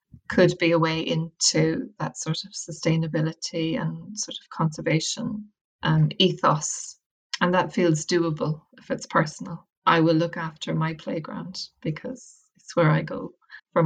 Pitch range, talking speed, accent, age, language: 165-210 Hz, 145 wpm, Irish, 20-39, English